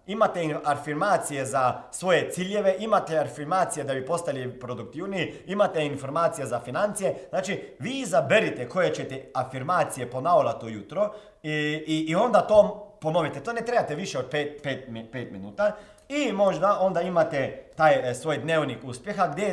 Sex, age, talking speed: male, 40-59, 140 wpm